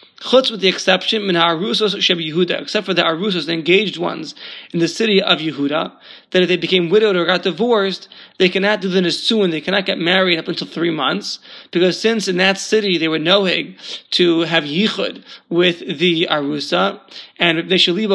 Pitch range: 165-200 Hz